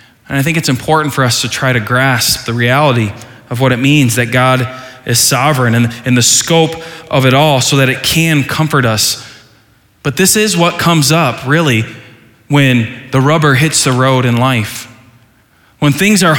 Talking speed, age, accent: 190 wpm, 20-39, American